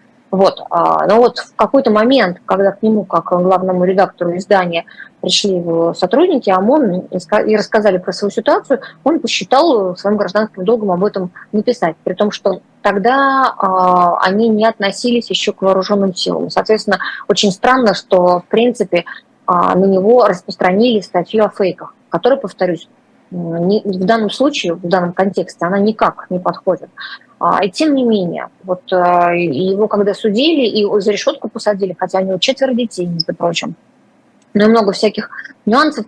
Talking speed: 150 wpm